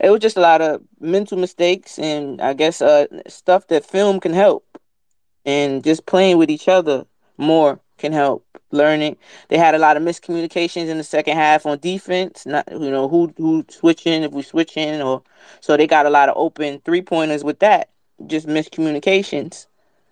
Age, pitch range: 20-39, 145-175 Hz